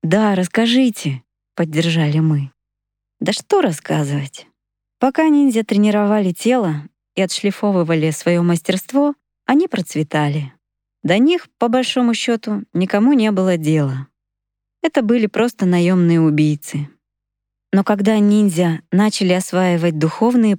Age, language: 20-39, Russian